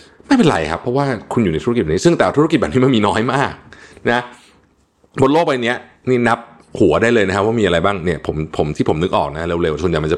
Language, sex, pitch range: Thai, male, 80-120 Hz